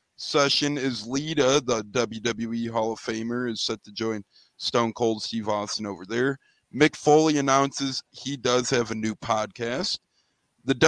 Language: English